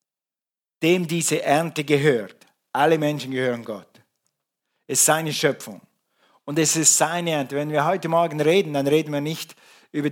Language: German